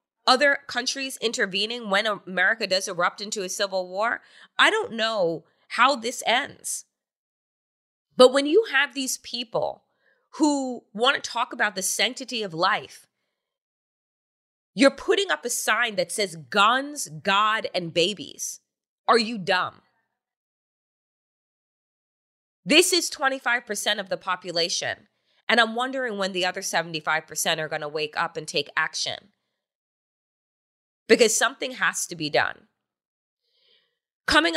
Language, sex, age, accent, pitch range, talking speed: English, female, 20-39, American, 170-235 Hz, 130 wpm